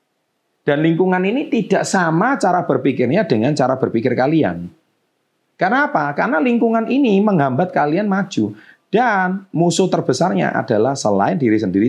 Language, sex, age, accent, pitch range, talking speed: Indonesian, male, 40-59, native, 115-175 Hz, 125 wpm